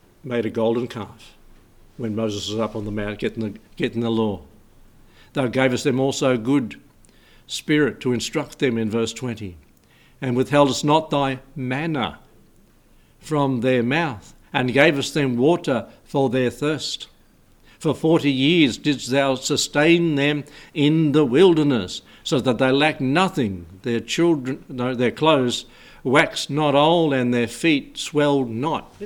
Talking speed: 145 wpm